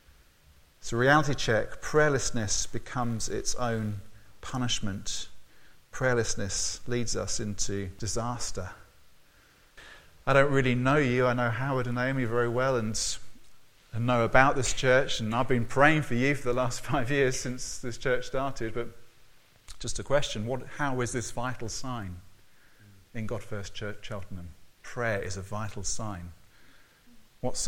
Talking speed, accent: 145 wpm, British